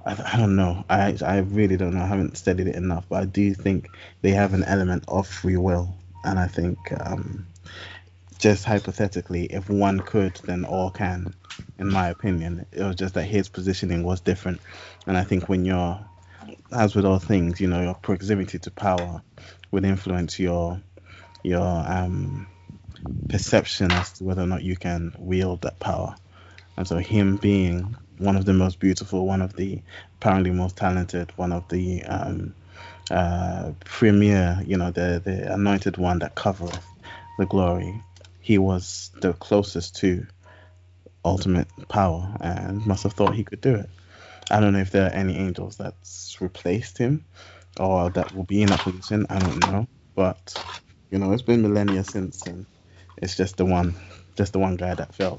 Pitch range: 90-100 Hz